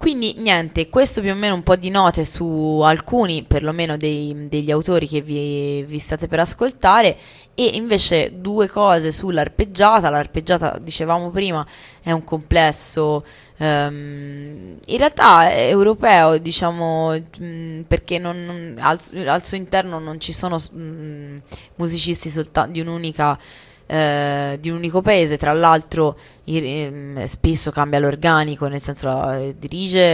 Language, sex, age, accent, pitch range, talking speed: Italian, female, 20-39, native, 145-170 Hz, 140 wpm